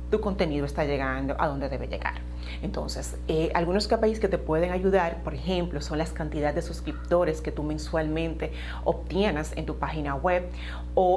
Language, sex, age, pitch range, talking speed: Spanish, female, 30-49, 130-185 Hz, 170 wpm